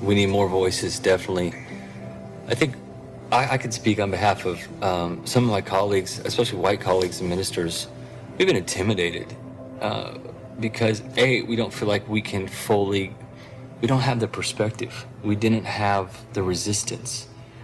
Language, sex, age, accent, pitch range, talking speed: English, male, 40-59, American, 95-120 Hz, 160 wpm